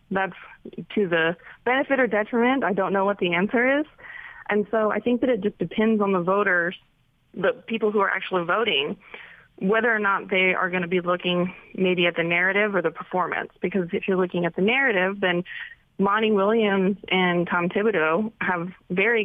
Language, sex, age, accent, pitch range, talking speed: English, female, 20-39, American, 180-220 Hz, 190 wpm